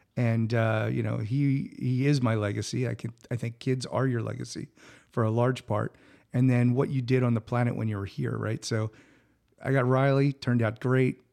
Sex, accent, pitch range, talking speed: male, American, 115-135 Hz, 215 wpm